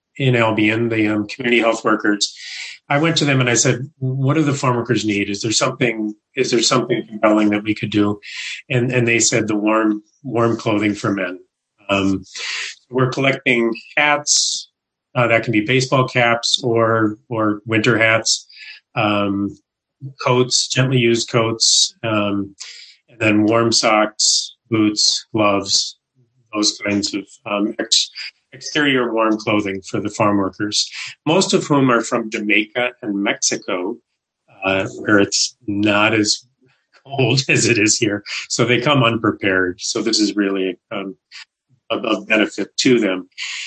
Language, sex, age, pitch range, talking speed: English, male, 30-49, 105-130 Hz, 155 wpm